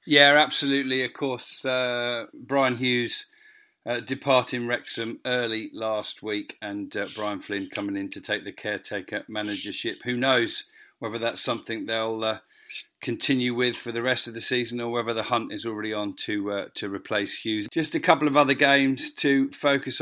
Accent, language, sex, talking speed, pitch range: British, English, male, 175 wpm, 115-145 Hz